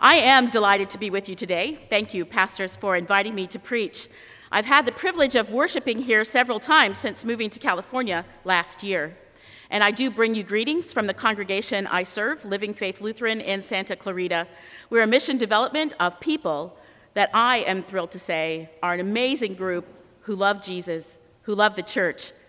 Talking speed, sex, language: 190 wpm, female, English